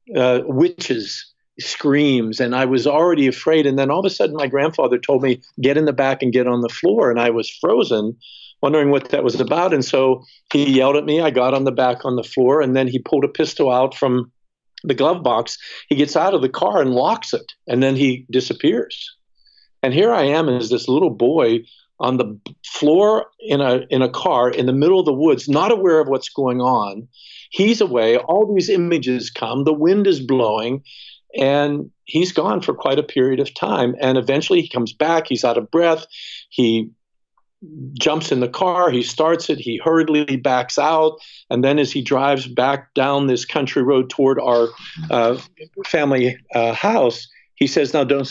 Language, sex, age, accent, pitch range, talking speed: English, male, 50-69, American, 125-155 Hz, 200 wpm